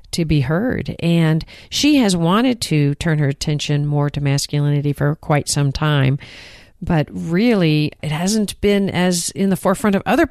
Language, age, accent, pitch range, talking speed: English, 50-69, American, 145-185 Hz, 170 wpm